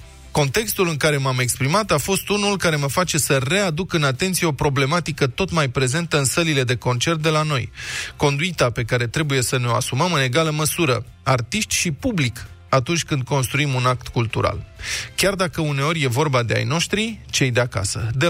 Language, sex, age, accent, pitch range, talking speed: Romanian, male, 20-39, native, 125-165 Hz, 195 wpm